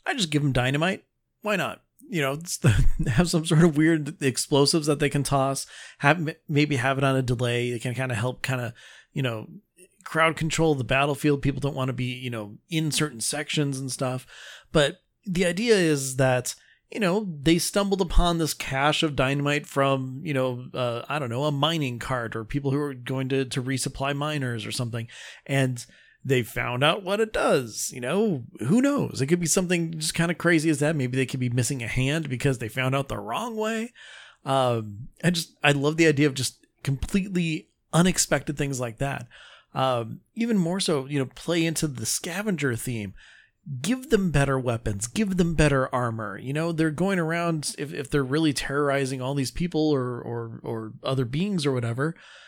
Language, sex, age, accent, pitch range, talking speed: English, male, 30-49, American, 130-165 Hz, 200 wpm